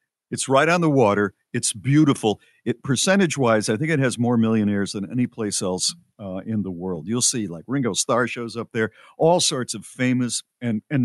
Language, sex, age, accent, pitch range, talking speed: English, male, 50-69, American, 100-130 Hz, 200 wpm